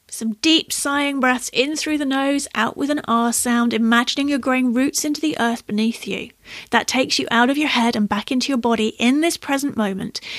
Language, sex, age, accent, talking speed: English, female, 30-49, British, 220 wpm